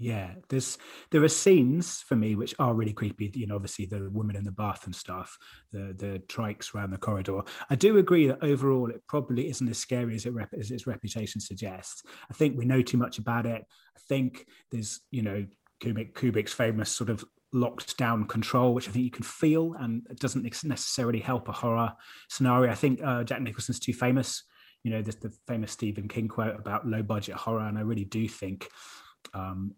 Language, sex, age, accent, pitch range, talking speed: English, male, 30-49, British, 105-130 Hz, 205 wpm